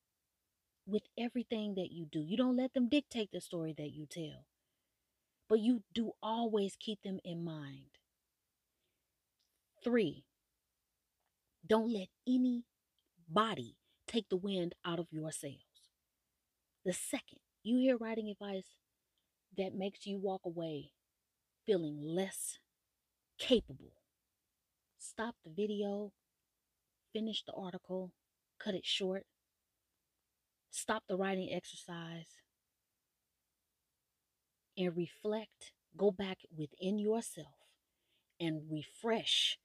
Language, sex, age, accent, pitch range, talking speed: English, female, 30-49, American, 145-205 Hz, 105 wpm